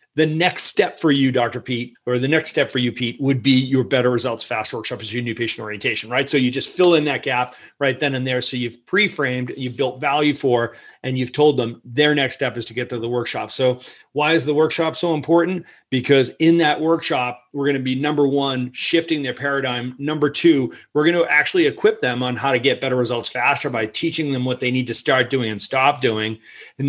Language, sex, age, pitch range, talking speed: English, male, 40-59, 125-150 Hz, 235 wpm